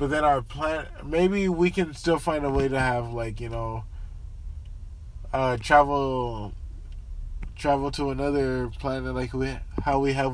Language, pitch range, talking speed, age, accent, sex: English, 95-145 Hz, 155 wpm, 20-39, American, male